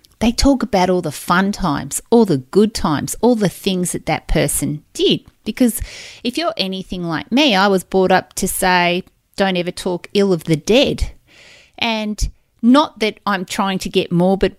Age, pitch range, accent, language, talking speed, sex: 30-49, 180-225 Hz, Australian, English, 185 wpm, female